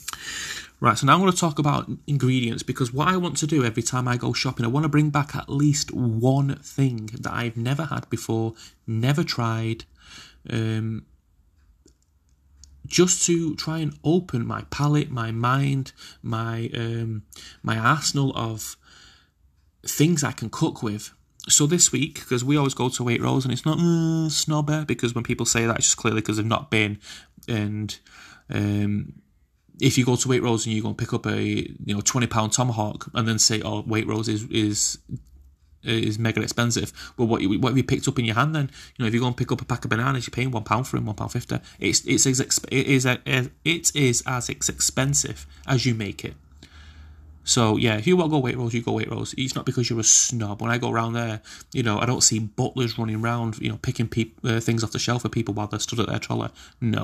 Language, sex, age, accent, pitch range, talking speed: English, male, 30-49, British, 110-135 Hz, 220 wpm